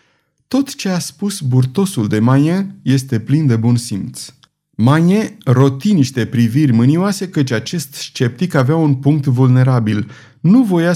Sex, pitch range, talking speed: male, 115-165 Hz, 135 wpm